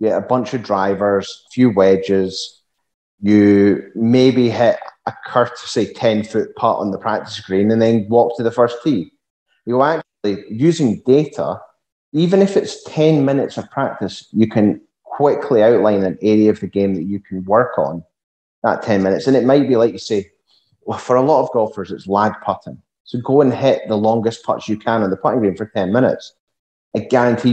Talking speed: 195 wpm